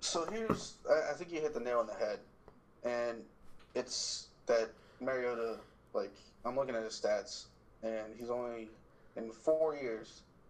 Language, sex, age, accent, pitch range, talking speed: English, male, 20-39, American, 110-130 Hz, 155 wpm